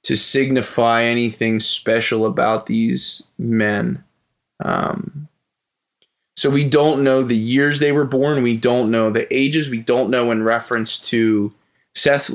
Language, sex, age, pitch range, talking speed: English, male, 20-39, 110-140 Hz, 140 wpm